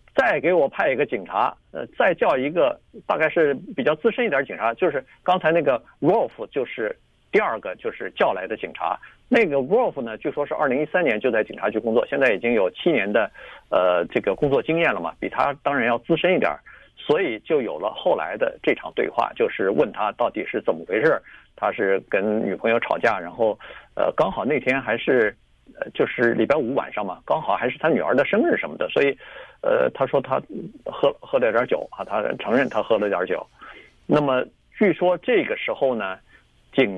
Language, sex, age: Chinese, male, 50-69